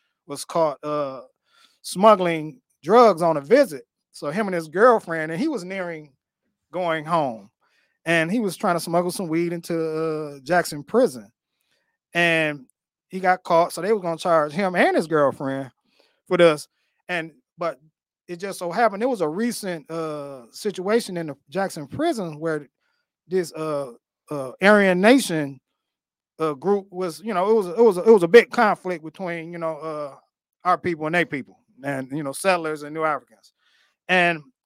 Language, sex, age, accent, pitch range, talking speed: English, male, 30-49, American, 155-205 Hz, 170 wpm